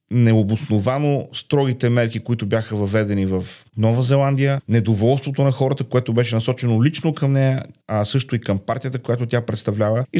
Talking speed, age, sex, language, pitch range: 160 wpm, 40-59, male, Bulgarian, 110-140 Hz